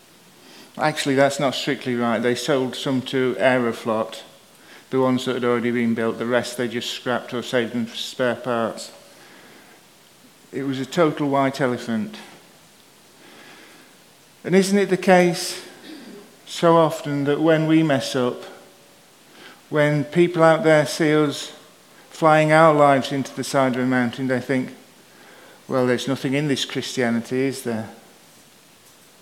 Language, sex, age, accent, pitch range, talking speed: English, male, 50-69, British, 130-155 Hz, 145 wpm